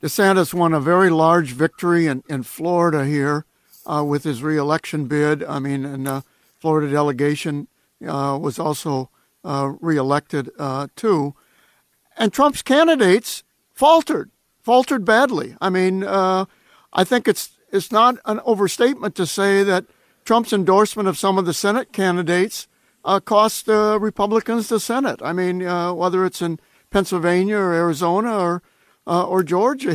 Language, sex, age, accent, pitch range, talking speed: English, male, 60-79, American, 165-205 Hz, 145 wpm